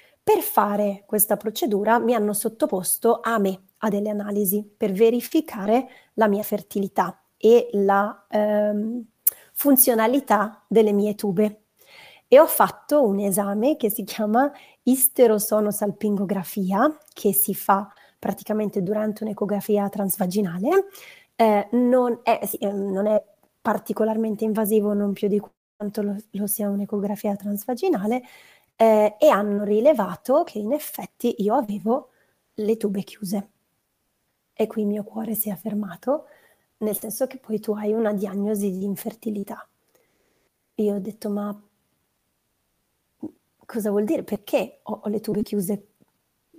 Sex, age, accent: female, 30-49, native